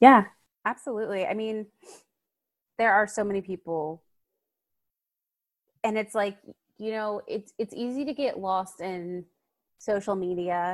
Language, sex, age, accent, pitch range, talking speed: English, female, 20-39, American, 190-225 Hz, 130 wpm